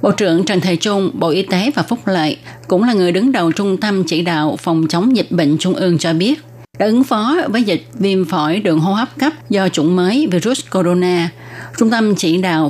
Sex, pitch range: female, 165-200 Hz